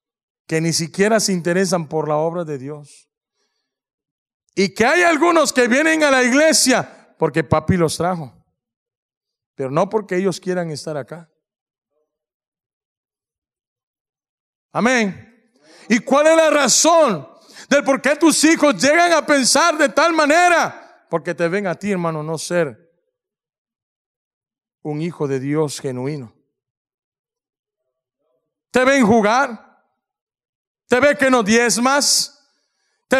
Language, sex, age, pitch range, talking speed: English, male, 40-59, 165-280 Hz, 125 wpm